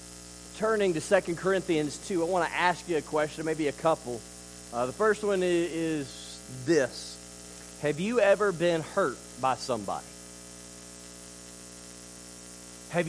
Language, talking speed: English, 135 wpm